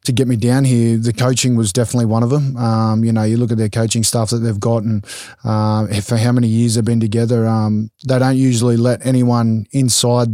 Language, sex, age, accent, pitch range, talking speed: English, male, 20-39, Australian, 115-125 Hz, 230 wpm